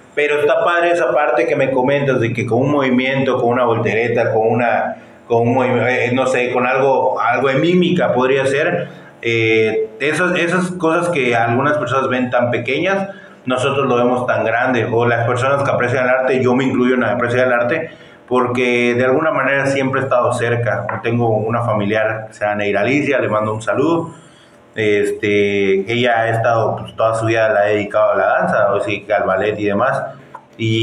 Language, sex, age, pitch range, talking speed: Spanish, male, 30-49, 115-145 Hz, 195 wpm